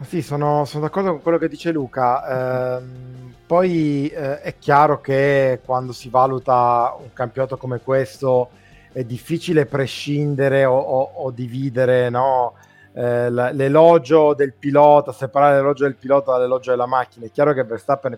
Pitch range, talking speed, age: 125-145 Hz, 150 wpm, 30-49